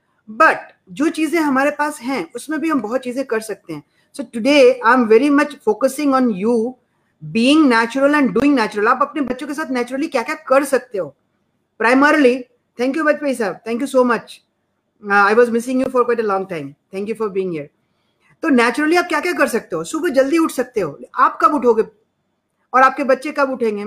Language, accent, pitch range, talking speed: Hindi, native, 215-265 Hz, 185 wpm